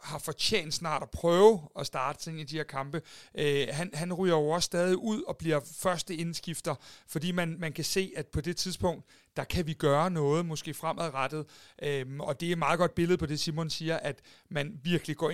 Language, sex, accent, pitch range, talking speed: Danish, male, native, 145-170 Hz, 215 wpm